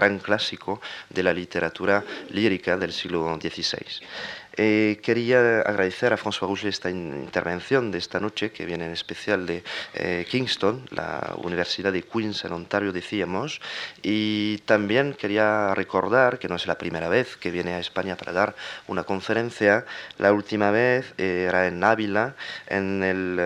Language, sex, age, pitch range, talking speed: Spanish, male, 30-49, 90-105 Hz, 160 wpm